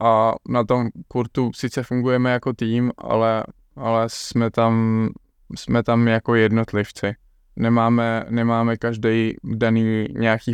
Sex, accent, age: male, native, 10-29